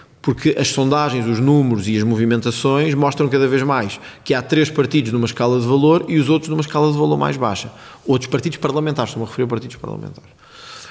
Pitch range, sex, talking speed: 120-160 Hz, male, 210 wpm